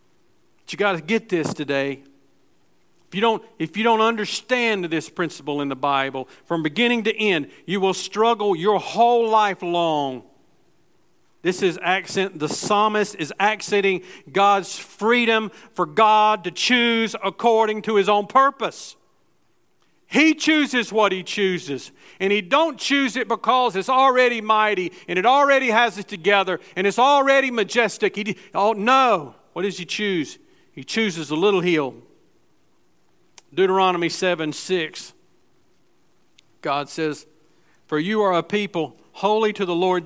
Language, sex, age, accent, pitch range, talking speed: English, male, 50-69, American, 170-225 Hz, 140 wpm